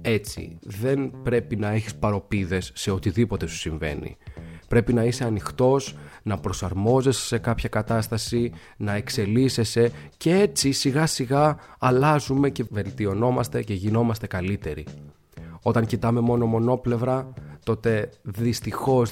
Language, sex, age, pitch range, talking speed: Greek, male, 30-49, 95-120 Hz, 115 wpm